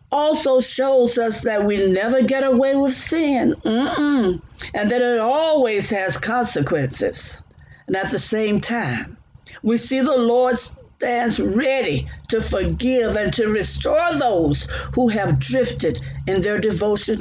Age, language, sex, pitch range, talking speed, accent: 60-79, English, female, 160-245 Hz, 145 wpm, American